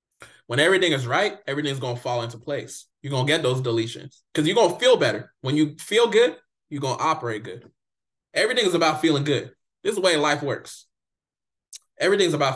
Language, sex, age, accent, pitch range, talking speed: English, male, 20-39, American, 115-155 Hz, 210 wpm